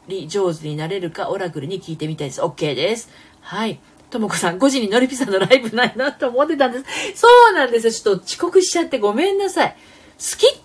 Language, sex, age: Japanese, female, 40-59